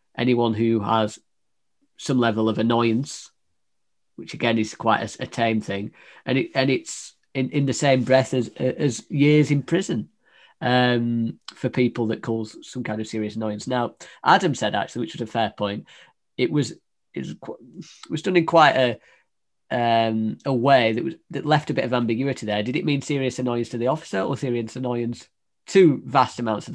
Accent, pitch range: British, 115-145 Hz